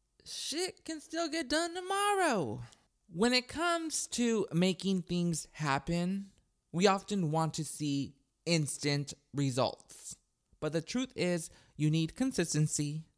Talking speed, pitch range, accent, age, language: 125 wpm, 135-180 Hz, American, 20-39, English